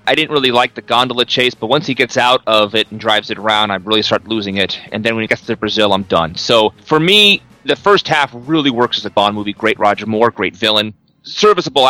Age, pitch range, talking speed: 30-49, 105-135 Hz, 250 wpm